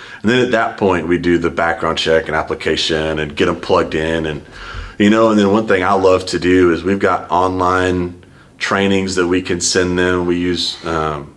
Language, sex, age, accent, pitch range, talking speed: English, male, 30-49, American, 85-95 Hz, 215 wpm